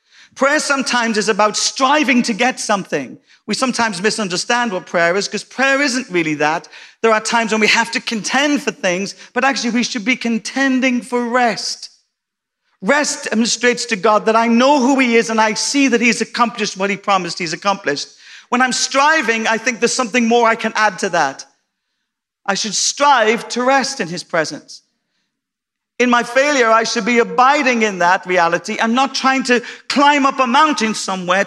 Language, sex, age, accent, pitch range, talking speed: English, male, 40-59, British, 200-250 Hz, 185 wpm